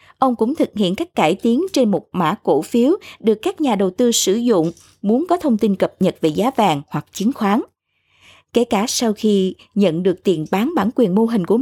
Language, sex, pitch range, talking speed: Vietnamese, female, 185-255 Hz, 225 wpm